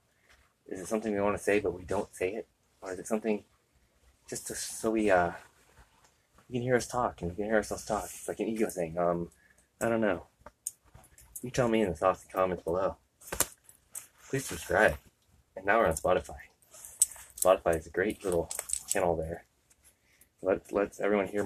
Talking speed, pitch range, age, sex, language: 195 wpm, 85-110 Hz, 20-39, male, English